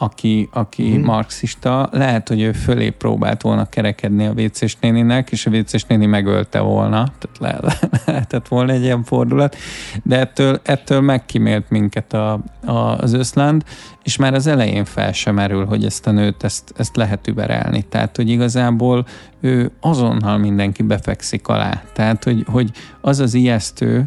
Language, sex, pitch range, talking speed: Hungarian, male, 105-120 Hz, 155 wpm